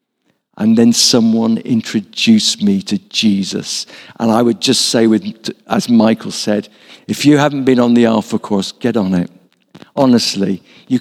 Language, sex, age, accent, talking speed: English, male, 60-79, British, 160 wpm